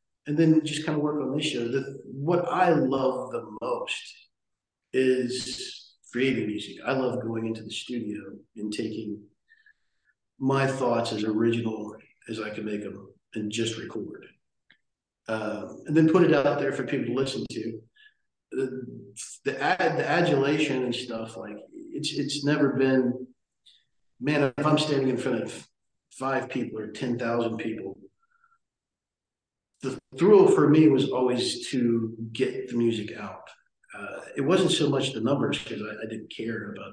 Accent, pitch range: American, 115-145 Hz